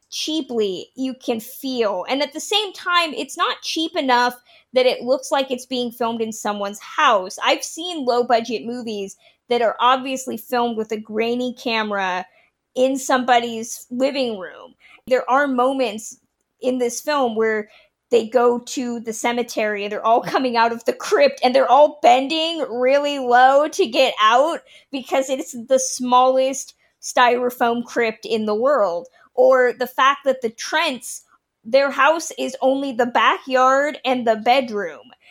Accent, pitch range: American, 230-270 Hz